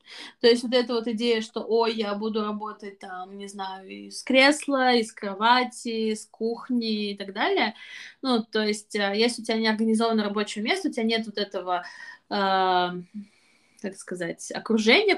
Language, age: Russian, 20-39